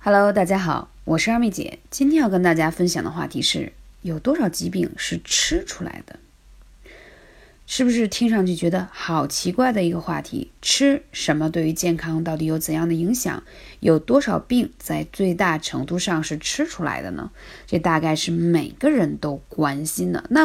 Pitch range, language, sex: 160-230 Hz, Chinese, female